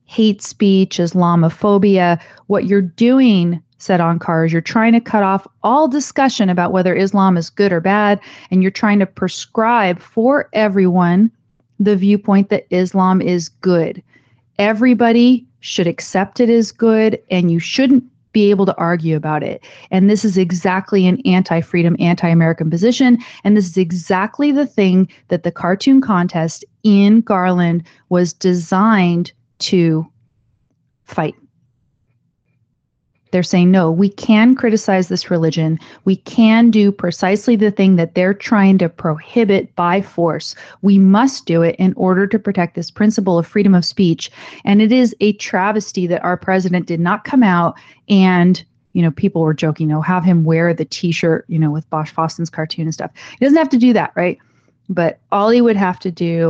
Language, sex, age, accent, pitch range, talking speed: English, female, 40-59, American, 170-210 Hz, 165 wpm